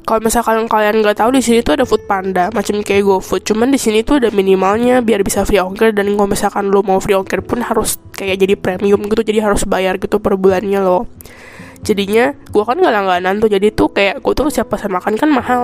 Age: 10-29